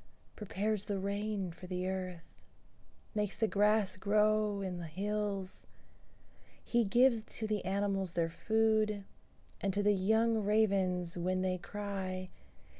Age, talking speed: 30-49, 130 wpm